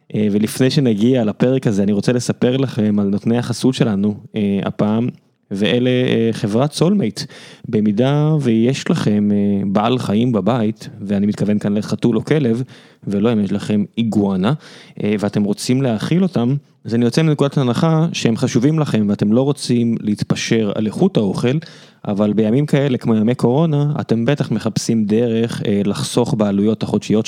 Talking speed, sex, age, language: 150 wpm, male, 20-39, Hebrew